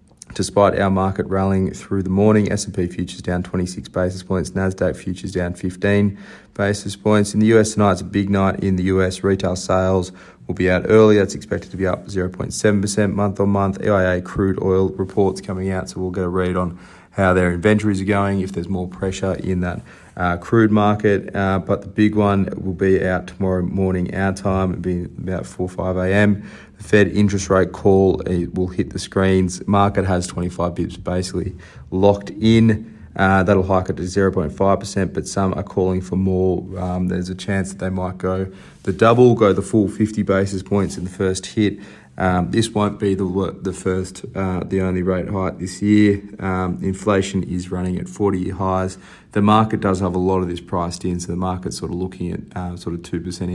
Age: 30-49